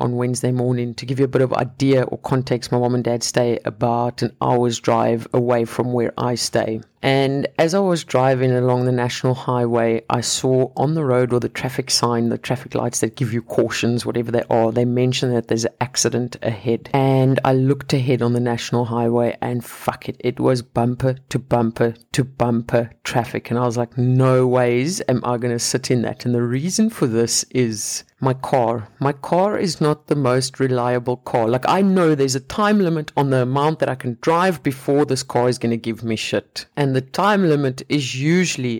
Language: English